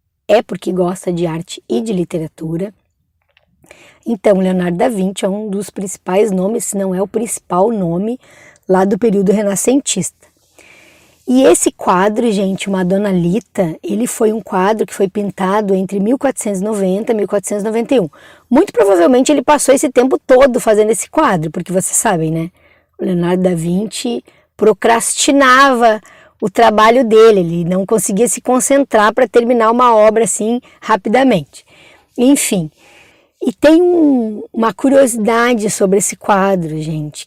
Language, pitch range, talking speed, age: Portuguese, 190-245 Hz, 140 wpm, 20-39